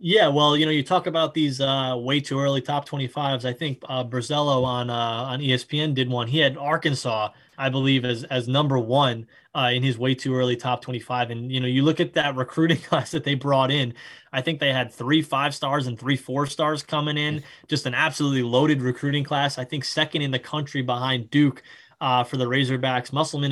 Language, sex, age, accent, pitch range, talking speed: English, male, 20-39, American, 130-155 Hz, 215 wpm